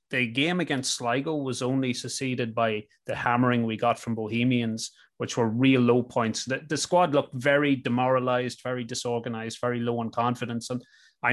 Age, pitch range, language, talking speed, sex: 30-49, 120-140 Hz, English, 175 wpm, male